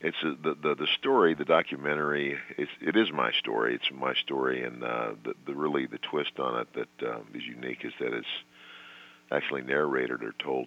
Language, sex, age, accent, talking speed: English, male, 50-69, American, 200 wpm